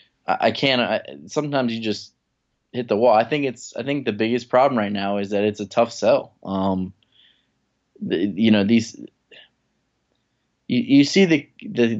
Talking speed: 170 wpm